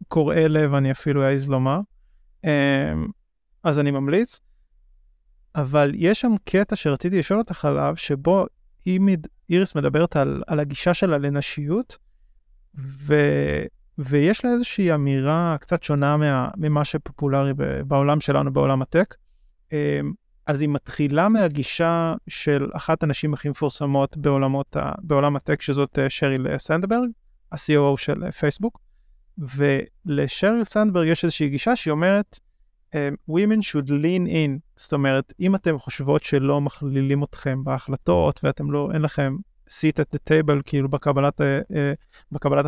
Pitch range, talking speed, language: 140-170 Hz, 120 wpm, Hebrew